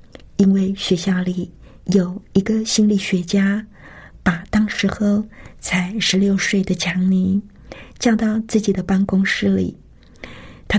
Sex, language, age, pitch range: female, Chinese, 50-69, 185-210 Hz